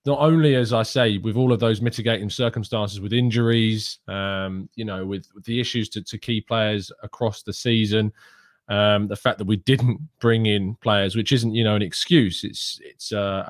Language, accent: English, British